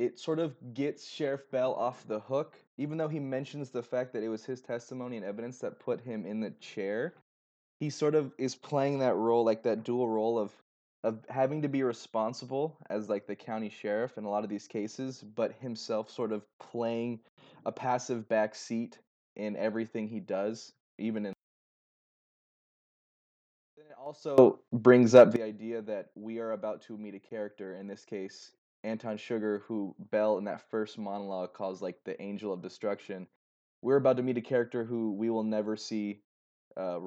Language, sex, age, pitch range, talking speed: English, male, 20-39, 100-125 Hz, 185 wpm